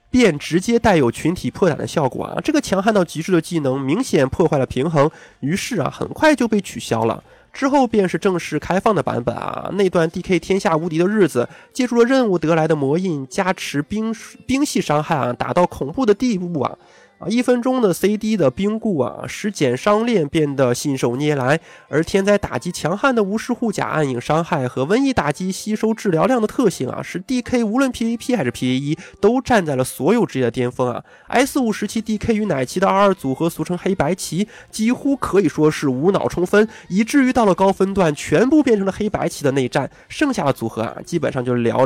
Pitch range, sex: 150-225 Hz, male